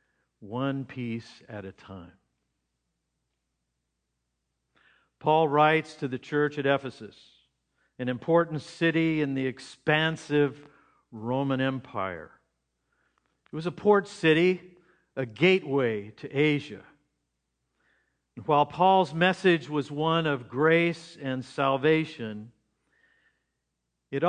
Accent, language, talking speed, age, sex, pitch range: American, English, 95 wpm, 50-69, male, 125-165 Hz